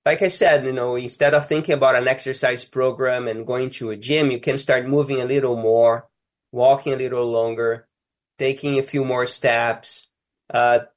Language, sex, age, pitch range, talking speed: English, male, 20-39, 120-145 Hz, 185 wpm